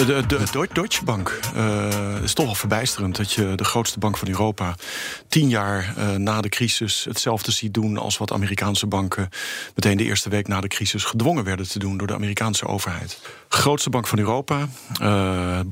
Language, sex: Dutch, male